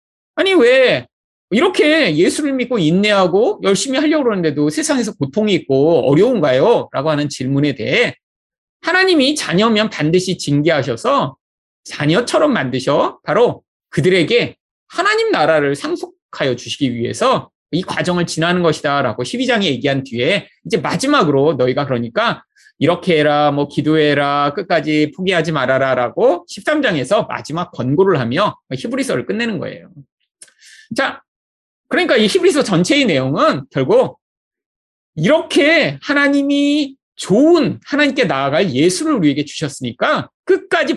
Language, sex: Korean, male